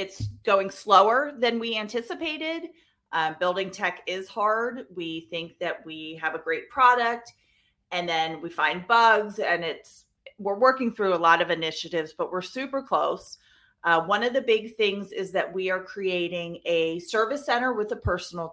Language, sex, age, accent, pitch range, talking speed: English, female, 30-49, American, 175-220 Hz, 175 wpm